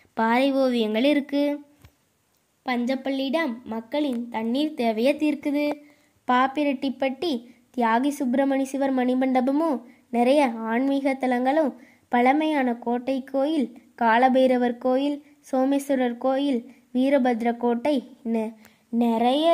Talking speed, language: 80 wpm, Tamil